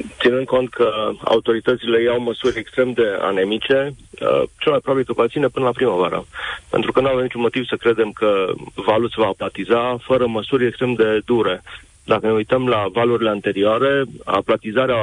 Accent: native